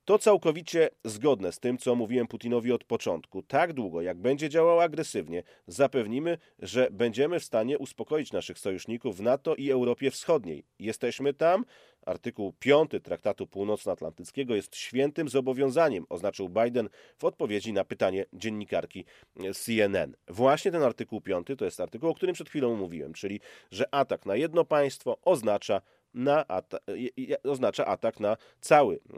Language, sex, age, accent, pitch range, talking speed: Polish, male, 30-49, native, 110-145 Hz, 145 wpm